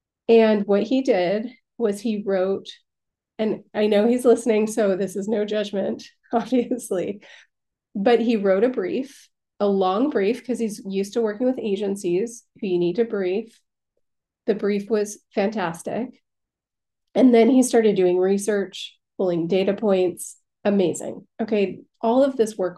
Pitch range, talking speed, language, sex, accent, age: 200-240 Hz, 150 wpm, English, female, American, 30-49